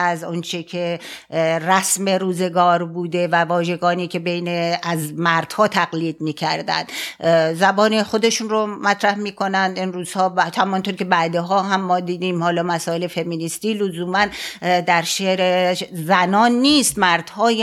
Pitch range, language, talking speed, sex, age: 170-200 Hz, Persian, 125 wpm, female, 50-69